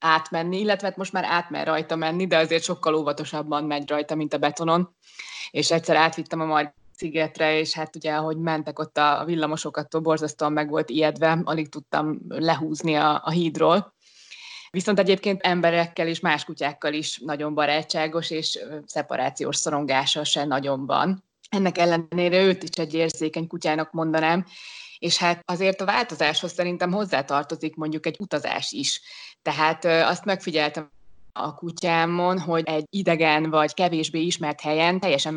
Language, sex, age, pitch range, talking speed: Hungarian, female, 20-39, 150-175 Hz, 150 wpm